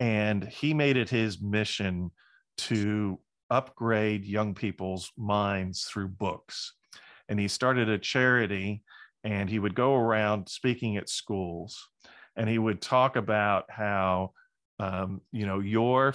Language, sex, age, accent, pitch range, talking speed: English, male, 40-59, American, 95-115 Hz, 135 wpm